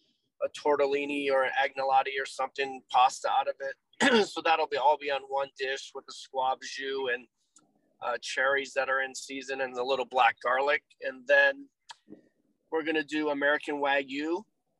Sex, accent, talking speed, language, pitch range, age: male, American, 170 wpm, English, 135-155 Hz, 30-49